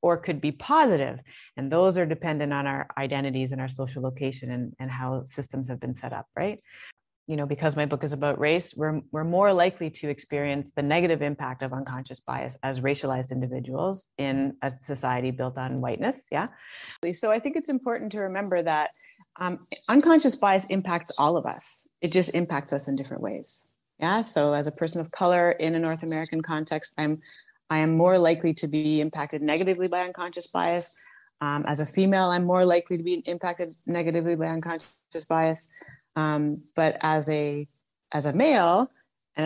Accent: American